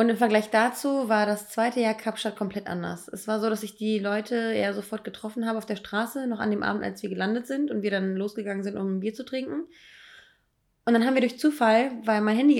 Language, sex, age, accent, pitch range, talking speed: German, female, 20-39, German, 215-255 Hz, 250 wpm